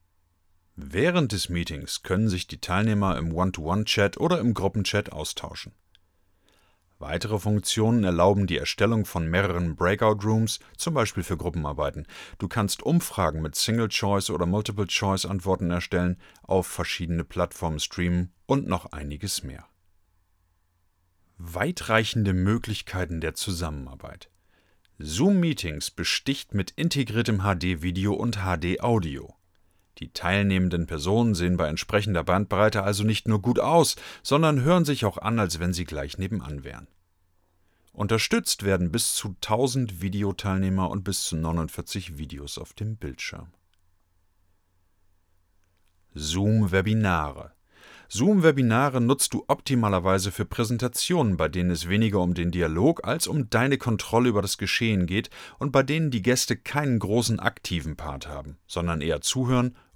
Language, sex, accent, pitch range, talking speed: German, male, German, 85-110 Hz, 125 wpm